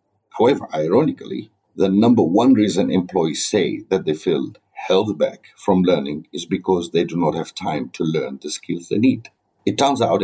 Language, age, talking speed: English, 50-69, 180 wpm